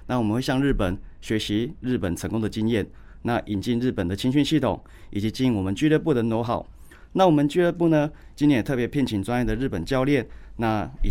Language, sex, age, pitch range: Chinese, male, 30-49, 105-135 Hz